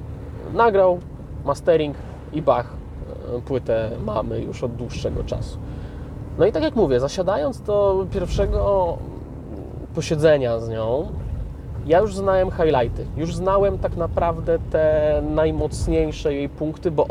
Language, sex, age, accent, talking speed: Polish, male, 20-39, native, 120 wpm